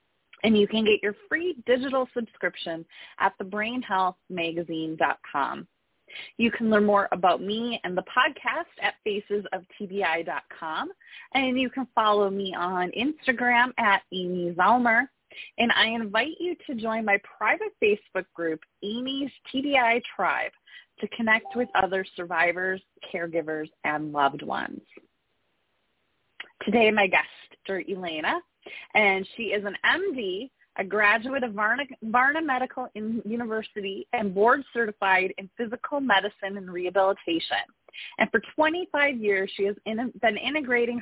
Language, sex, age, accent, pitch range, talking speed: English, female, 20-39, American, 190-250 Hz, 125 wpm